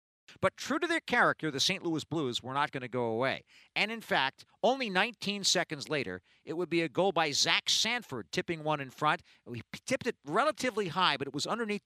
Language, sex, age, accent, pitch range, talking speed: English, male, 50-69, American, 145-205 Hz, 220 wpm